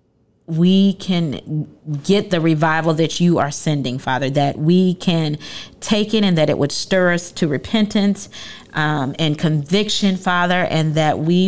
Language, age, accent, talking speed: English, 30-49, American, 155 wpm